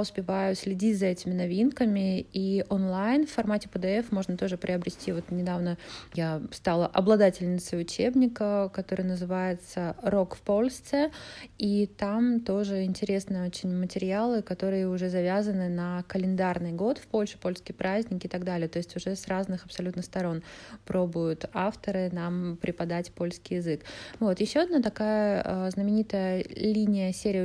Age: 20-39